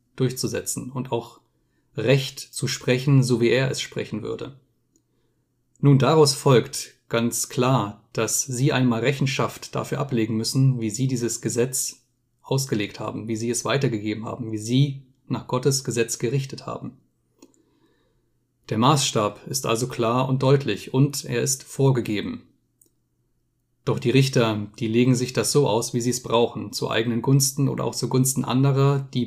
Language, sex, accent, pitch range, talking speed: German, male, German, 115-135 Hz, 155 wpm